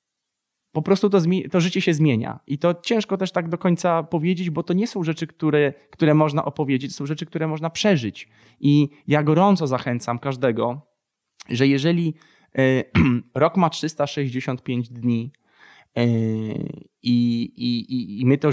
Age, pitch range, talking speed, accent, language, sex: 20-39, 125-175 Hz, 155 wpm, native, Polish, male